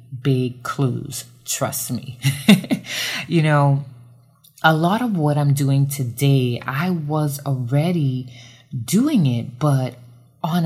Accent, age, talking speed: American, 20-39, 115 wpm